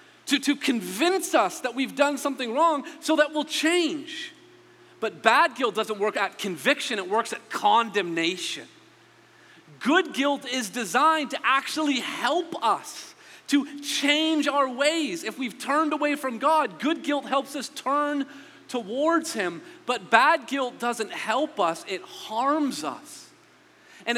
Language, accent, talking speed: English, American, 145 wpm